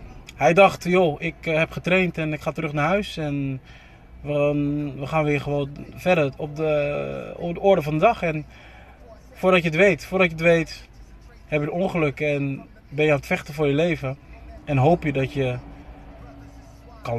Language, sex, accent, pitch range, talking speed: Dutch, male, Dutch, 130-165 Hz, 190 wpm